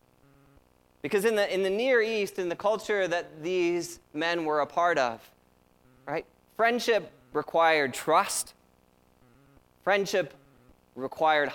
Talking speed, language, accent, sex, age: 120 wpm, English, American, male, 20-39